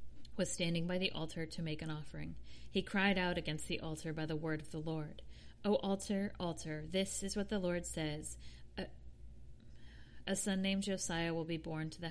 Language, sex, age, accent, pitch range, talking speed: English, female, 40-59, American, 155-185 Hz, 200 wpm